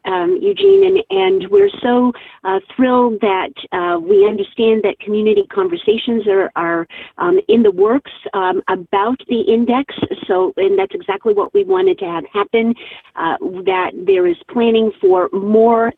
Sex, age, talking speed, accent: female, 50-69, 160 wpm, American